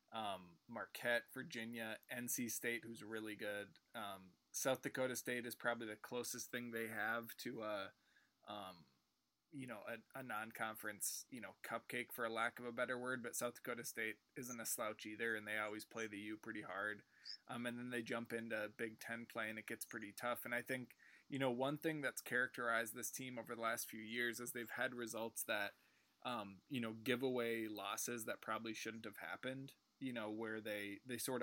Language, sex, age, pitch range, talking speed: English, male, 20-39, 110-120 Hz, 200 wpm